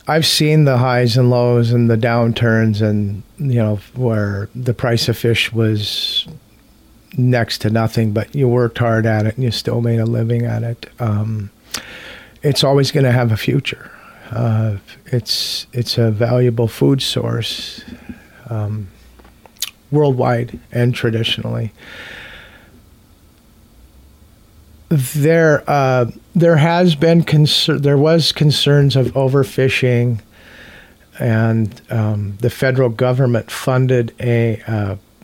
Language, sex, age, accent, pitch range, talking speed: English, male, 40-59, American, 110-130 Hz, 125 wpm